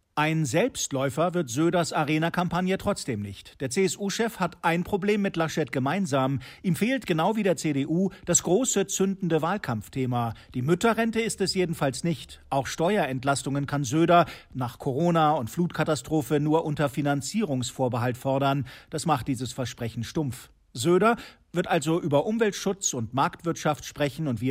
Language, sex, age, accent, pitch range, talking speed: German, male, 50-69, German, 135-175 Hz, 140 wpm